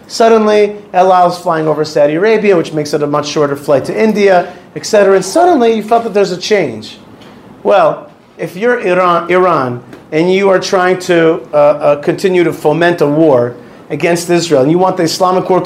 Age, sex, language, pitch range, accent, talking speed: 40-59, male, English, 160-215 Hz, American, 195 wpm